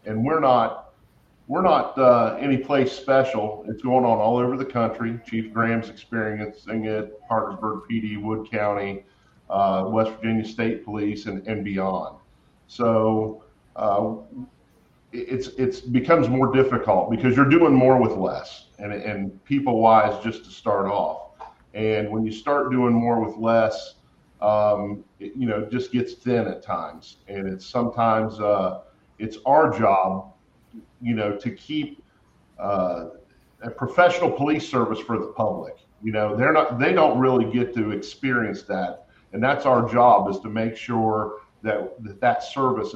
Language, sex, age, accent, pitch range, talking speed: English, male, 40-59, American, 105-130 Hz, 155 wpm